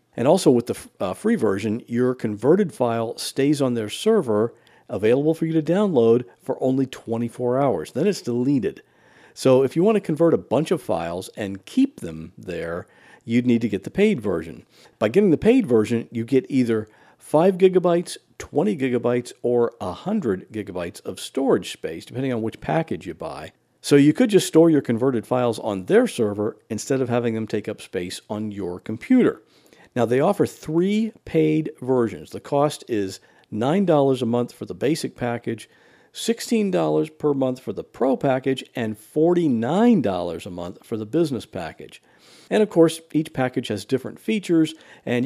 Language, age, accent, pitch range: English, 50-69, American, 110-160 Hz